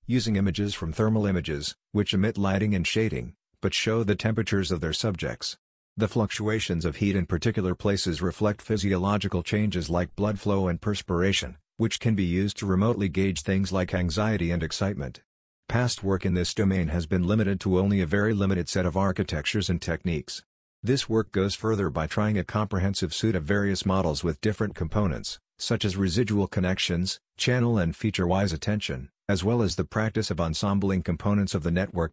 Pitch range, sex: 85-105 Hz, male